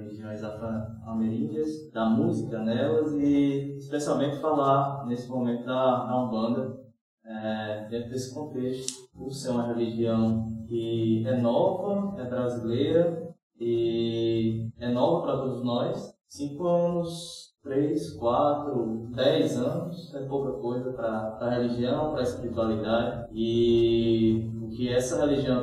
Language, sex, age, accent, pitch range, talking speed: Portuguese, male, 20-39, Brazilian, 115-140 Hz, 125 wpm